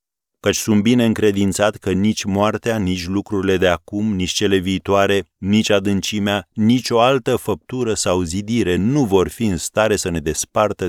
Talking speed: 165 wpm